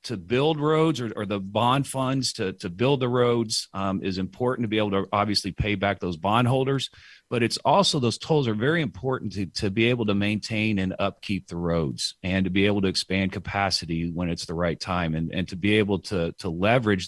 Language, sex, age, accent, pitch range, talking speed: English, male, 40-59, American, 90-110 Hz, 220 wpm